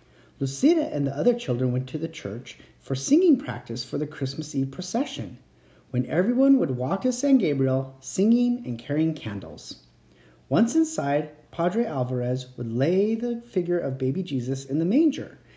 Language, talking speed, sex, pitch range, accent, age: English, 160 wpm, male, 130-200 Hz, American, 30-49